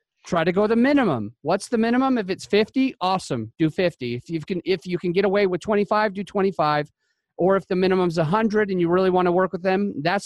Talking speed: 235 wpm